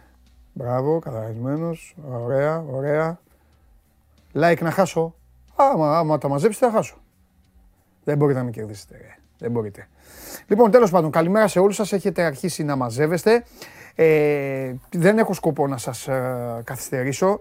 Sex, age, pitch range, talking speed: male, 30-49, 140-200 Hz, 135 wpm